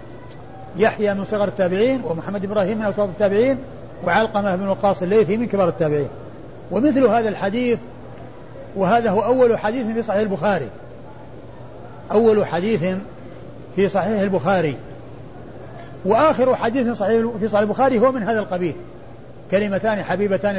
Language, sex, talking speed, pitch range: Arabic, male, 125 wpm, 170-210 Hz